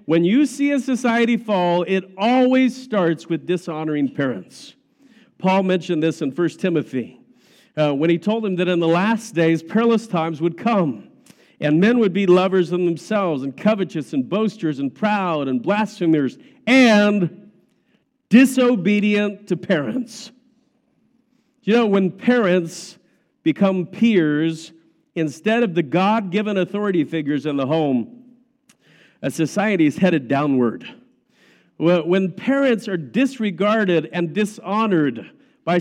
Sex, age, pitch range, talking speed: male, 50-69, 165-225 Hz, 130 wpm